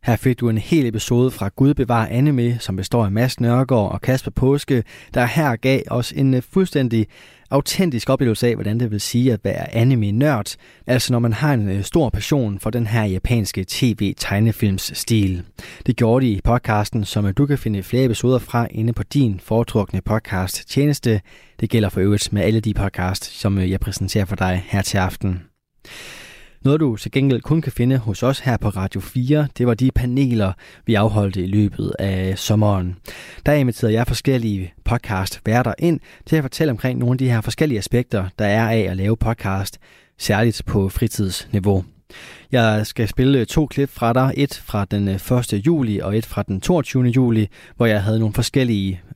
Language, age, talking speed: Danish, 20-39, 185 wpm